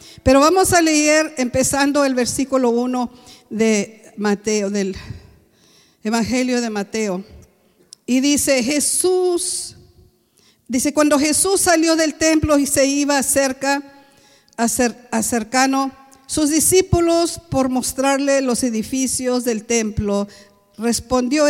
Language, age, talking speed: English, 50-69, 110 wpm